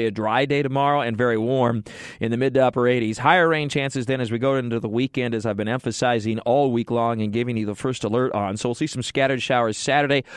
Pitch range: 115-135 Hz